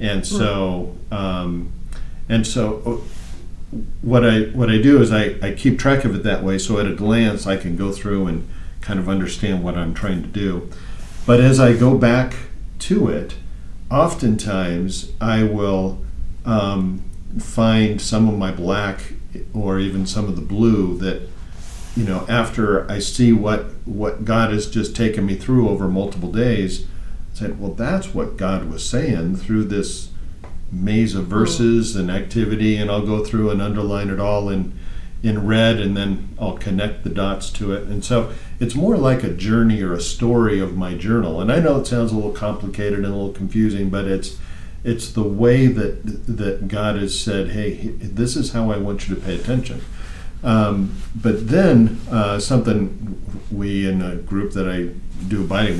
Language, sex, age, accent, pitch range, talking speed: English, male, 50-69, American, 95-110 Hz, 175 wpm